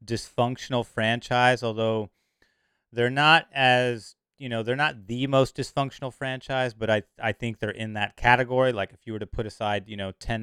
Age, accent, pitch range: 30-49, American, 100-120 Hz